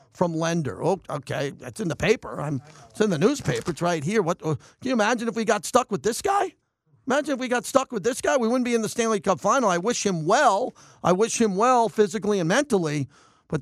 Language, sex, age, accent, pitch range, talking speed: English, male, 50-69, American, 165-220 Hz, 240 wpm